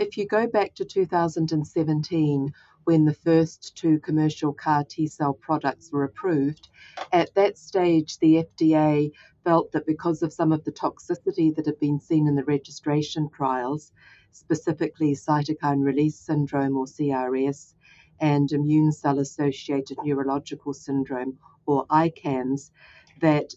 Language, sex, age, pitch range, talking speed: English, female, 50-69, 140-160 Hz, 130 wpm